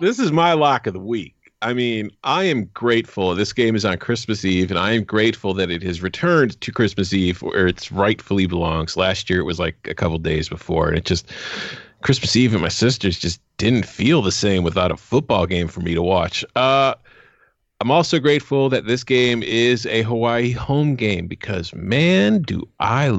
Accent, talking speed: American, 205 wpm